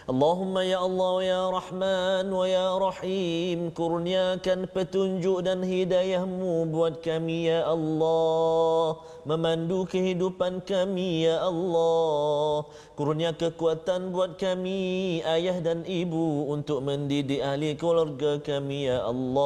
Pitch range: 145-185 Hz